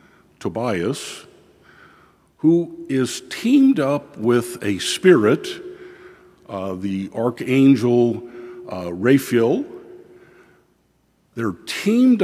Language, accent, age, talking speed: English, American, 50-69, 75 wpm